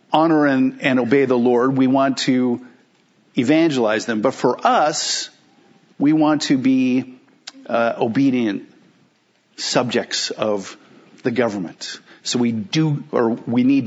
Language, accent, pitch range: English, American, 140-225 Hz